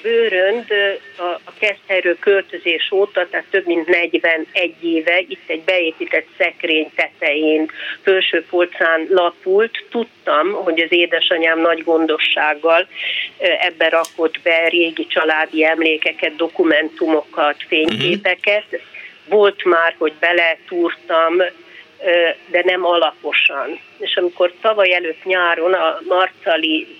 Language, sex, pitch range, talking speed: Hungarian, female, 160-195 Hz, 100 wpm